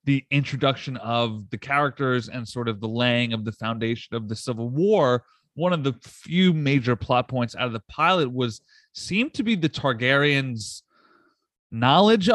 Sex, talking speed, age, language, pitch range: male, 170 wpm, 30-49, English, 120-170 Hz